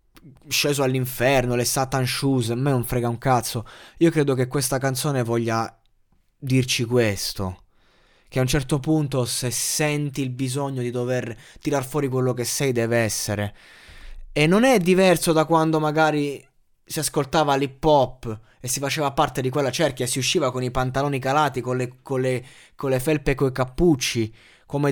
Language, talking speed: Italian, 175 wpm